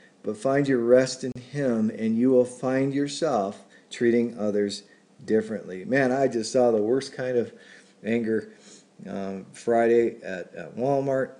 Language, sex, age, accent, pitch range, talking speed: English, male, 50-69, American, 115-150 Hz, 145 wpm